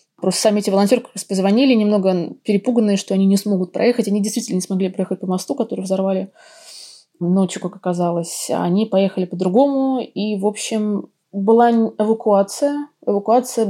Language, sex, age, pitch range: Russian, female, 20-39, 190-225 Hz